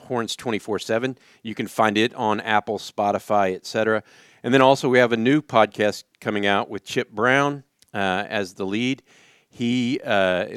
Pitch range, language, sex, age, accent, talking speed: 90-115 Hz, English, male, 50-69, American, 165 wpm